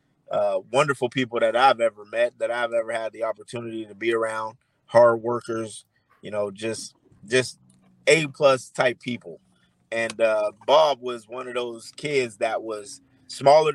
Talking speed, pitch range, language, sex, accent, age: 160 wpm, 115-135 Hz, English, male, American, 30-49